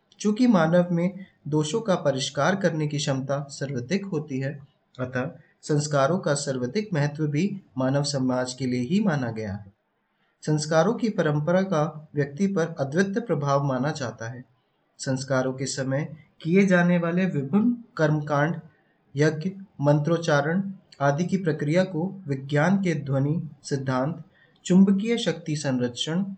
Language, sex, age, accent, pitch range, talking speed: Hindi, male, 20-39, native, 140-180 Hz, 80 wpm